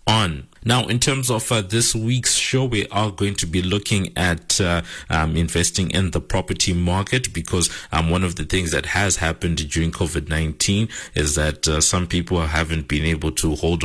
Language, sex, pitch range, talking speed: English, male, 80-95 Hz, 190 wpm